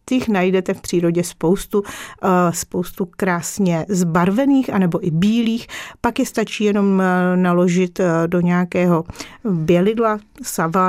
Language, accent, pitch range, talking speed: Czech, native, 180-210 Hz, 110 wpm